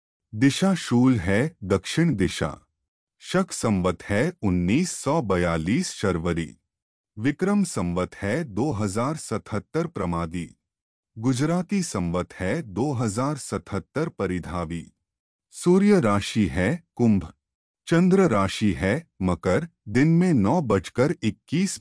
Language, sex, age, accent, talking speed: Hindi, male, 30-49, native, 95 wpm